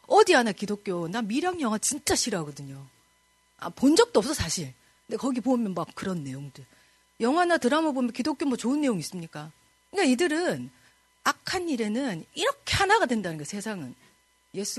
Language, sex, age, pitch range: Korean, female, 40-59, 190-290 Hz